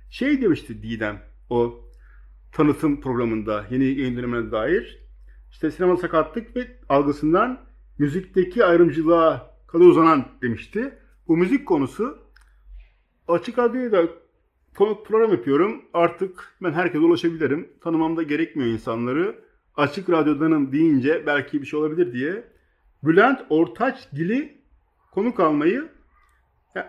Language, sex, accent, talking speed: Turkish, male, native, 105 wpm